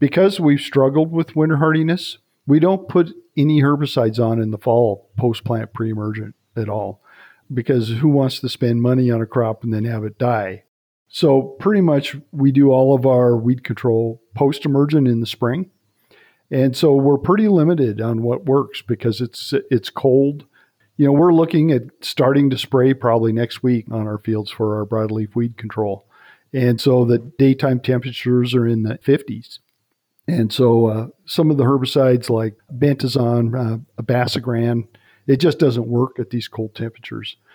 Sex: male